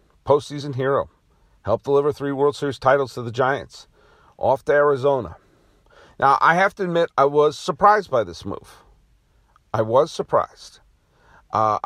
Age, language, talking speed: 50-69, English, 145 wpm